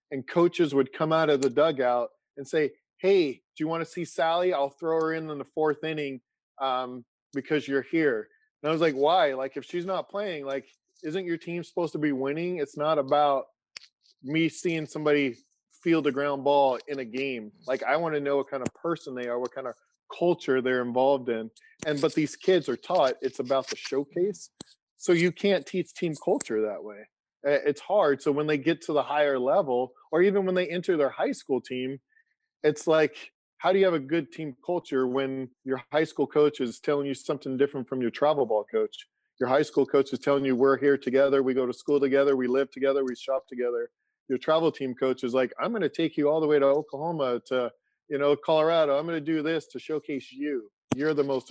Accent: American